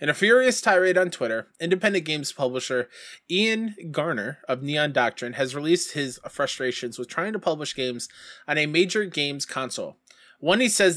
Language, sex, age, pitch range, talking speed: English, male, 20-39, 135-180 Hz, 170 wpm